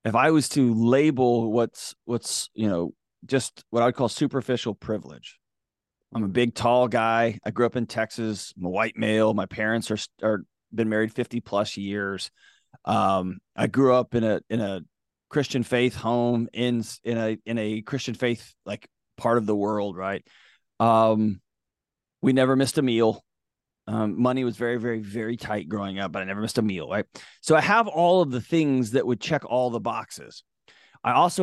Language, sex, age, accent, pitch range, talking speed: English, male, 30-49, American, 110-130 Hz, 190 wpm